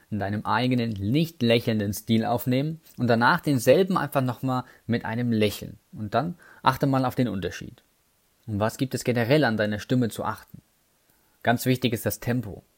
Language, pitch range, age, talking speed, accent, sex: German, 105-130 Hz, 20-39, 175 wpm, German, male